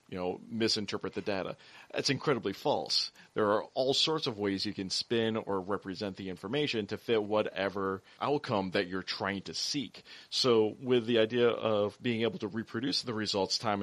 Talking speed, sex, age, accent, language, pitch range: 180 wpm, male, 30-49, American, English, 95-120 Hz